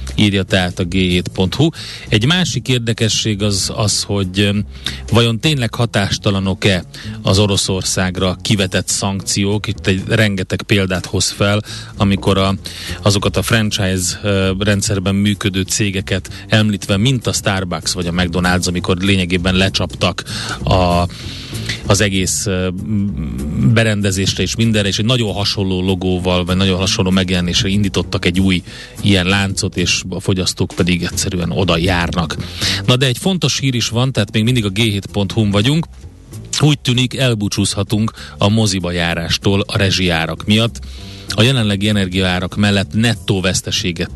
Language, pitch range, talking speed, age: Hungarian, 90-110 Hz, 130 wpm, 30-49